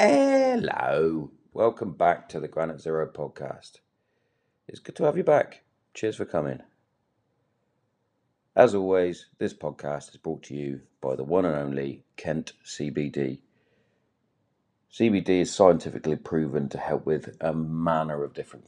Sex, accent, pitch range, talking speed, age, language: male, British, 70-80 Hz, 140 wpm, 40-59, English